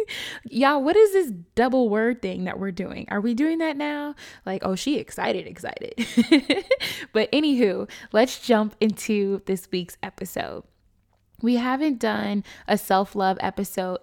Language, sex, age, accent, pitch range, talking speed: English, female, 20-39, American, 190-225 Hz, 145 wpm